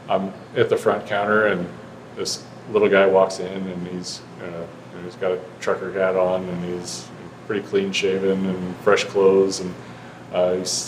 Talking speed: 165 wpm